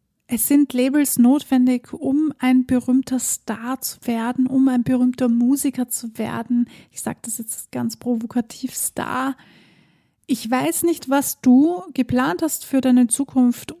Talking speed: 145 wpm